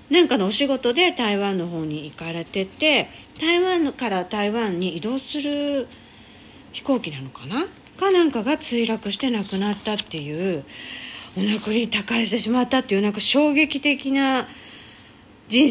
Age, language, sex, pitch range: 40-59, Japanese, female, 175-275 Hz